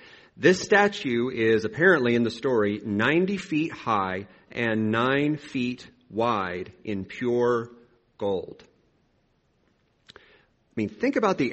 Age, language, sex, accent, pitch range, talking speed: 40-59, English, male, American, 105-135 Hz, 115 wpm